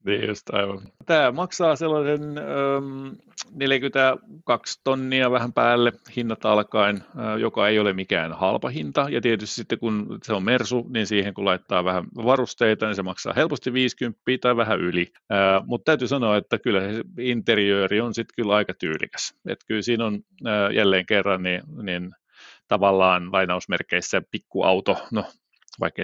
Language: Finnish